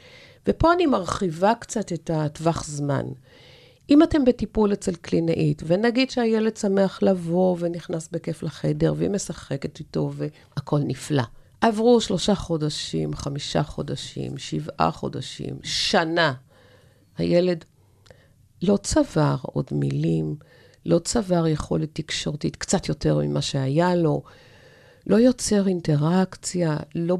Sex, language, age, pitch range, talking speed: female, Hebrew, 50-69, 145-240 Hz, 110 wpm